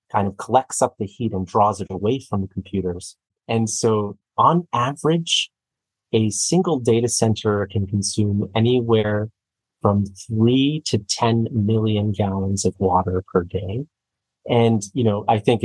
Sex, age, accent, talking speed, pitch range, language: male, 30-49, American, 145 wpm, 95-115 Hz, English